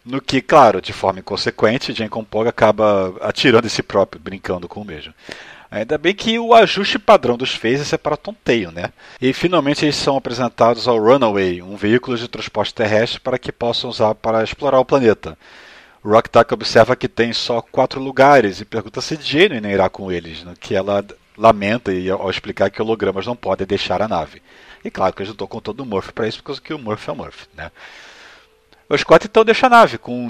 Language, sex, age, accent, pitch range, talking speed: Portuguese, male, 40-59, Brazilian, 100-130 Hz, 205 wpm